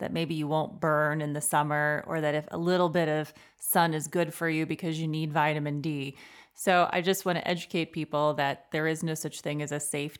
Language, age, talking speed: English, 30-49, 240 wpm